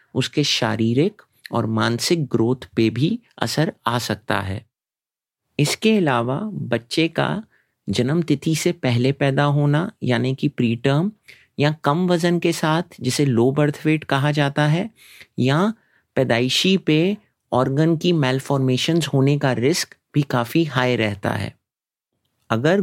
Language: Hindi